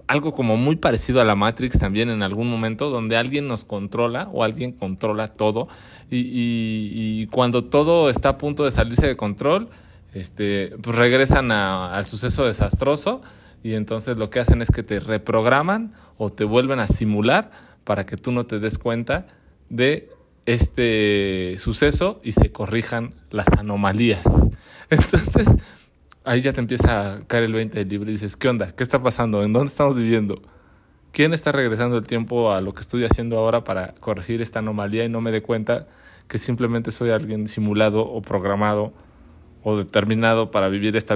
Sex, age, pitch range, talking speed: male, 30-49, 105-125 Hz, 175 wpm